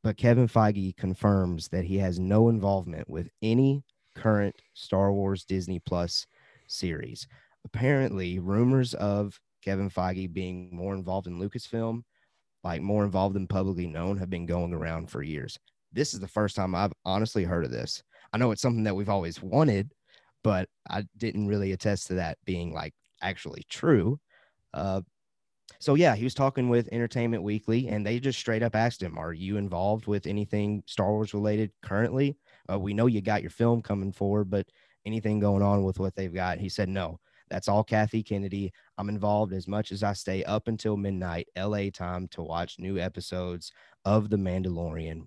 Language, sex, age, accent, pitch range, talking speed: English, male, 30-49, American, 95-110 Hz, 180 wpm